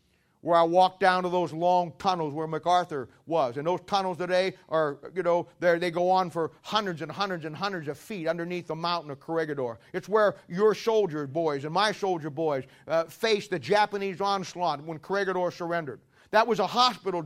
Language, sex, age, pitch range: English, male, 40-59, 160-195 Hz